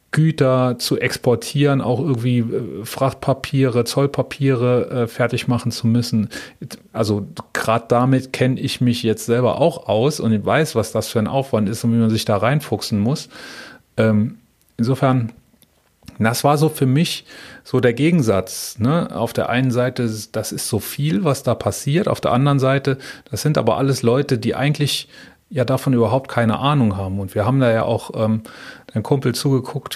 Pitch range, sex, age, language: 110-135 Hz, male, 30-49, German